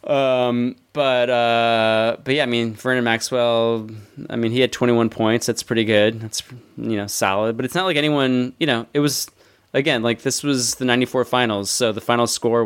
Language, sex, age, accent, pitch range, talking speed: English, male, 20-39, American, 105-125 Hz, 200 wpm